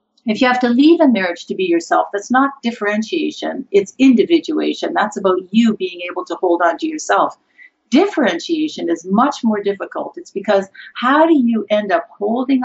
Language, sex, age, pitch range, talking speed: English, female, 50-69, 200-295 Hz, 180 wpm